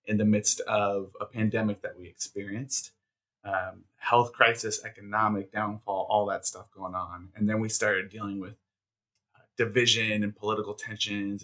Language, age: English, 30-49